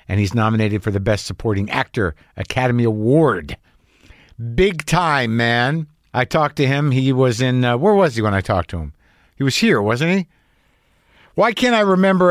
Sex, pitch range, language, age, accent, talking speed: male, 105-145 Hz, English, 50-69, American, 185 wpm